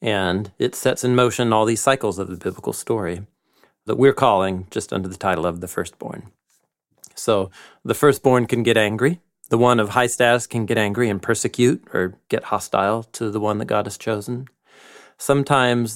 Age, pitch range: 40-59, 100-125 Hz